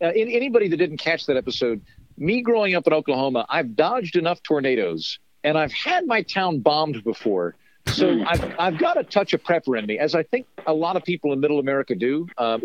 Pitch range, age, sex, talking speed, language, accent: 125-180 Hz, 50-69, male, 220 wpm, English, American